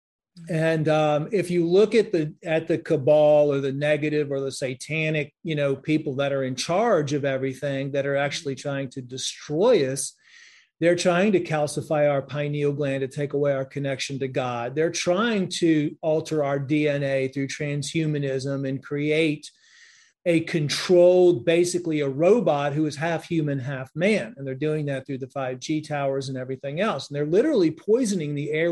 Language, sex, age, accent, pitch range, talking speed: English, male, 40-59, American, 140-170 Hz, 180 wpm